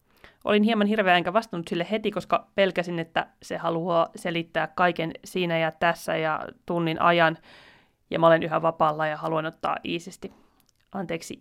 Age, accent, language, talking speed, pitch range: 30-49, native, Finnish, 160 wpm, 165-210 Hz